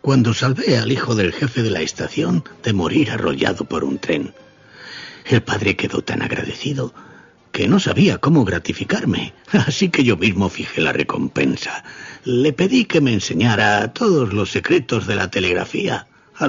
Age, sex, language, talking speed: 50-69, male, Spanish, 160 wpm